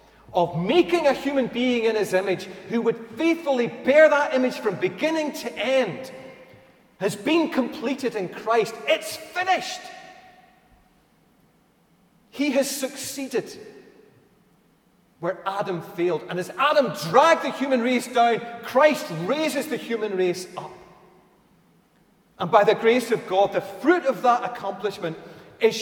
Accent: British